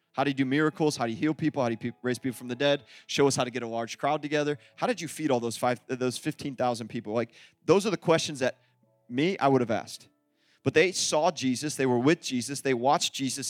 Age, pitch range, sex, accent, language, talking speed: 30-49, 135-210 Hz, male, American, English, 265 wpm